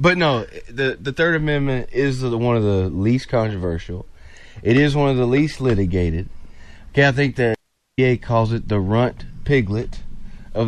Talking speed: 170 wpm